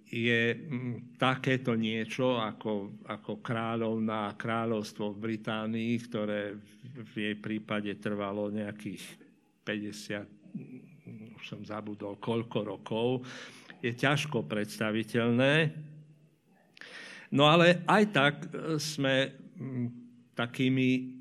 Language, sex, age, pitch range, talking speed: Slovak, male, 50-69, 110-135 Hz, 85 wpm